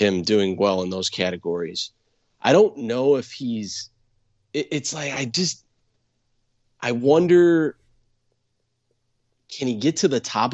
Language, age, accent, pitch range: English, 30-49, American, 110-130 Hz